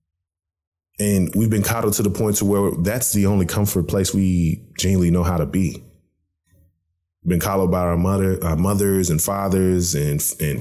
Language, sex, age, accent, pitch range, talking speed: English, male, 20-39, American, 85-100 Hz, 180 wpm